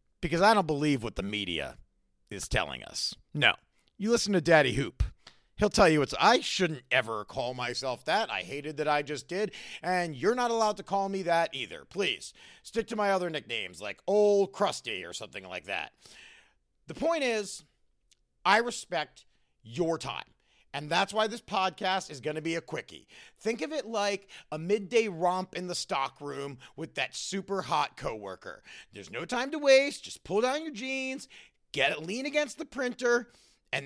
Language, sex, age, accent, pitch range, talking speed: English, male, 40-59, American, 150-230 Hz, 185 wpm